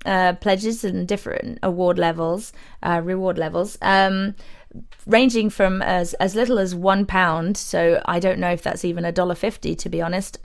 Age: 20-39